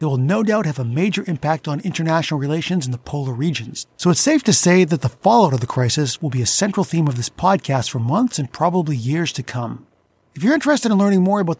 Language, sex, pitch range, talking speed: English, male, 140-195 Hz, 250 wpm